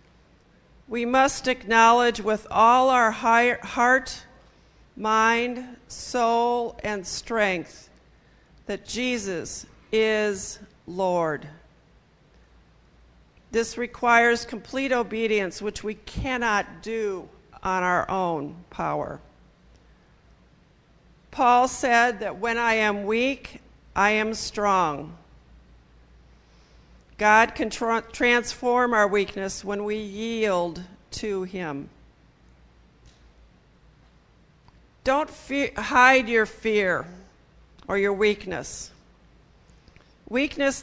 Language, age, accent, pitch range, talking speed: English, 50-69, American, 185-240 Hz, 80 wpm